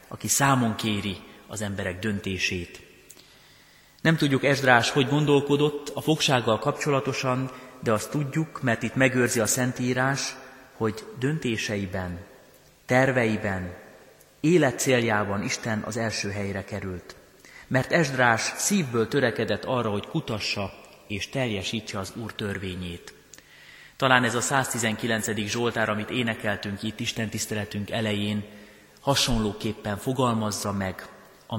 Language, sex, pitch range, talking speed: Hungarian, male, 105-130 Hz, 110 wpm